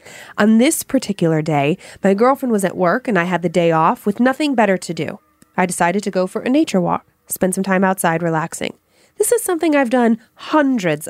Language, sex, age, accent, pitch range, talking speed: English, female, 20-39, American, 175-230 Hz, 210 wpm